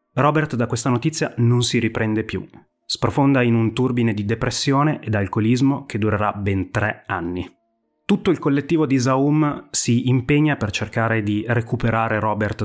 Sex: male